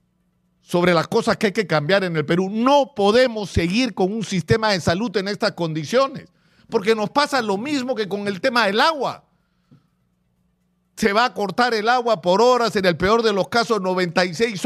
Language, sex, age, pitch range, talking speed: Spanish, male, 50-69, 180-230 Hz, 190 wpm